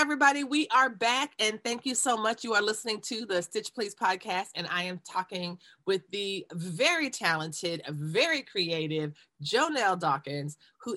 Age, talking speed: 30-49, 165 wpm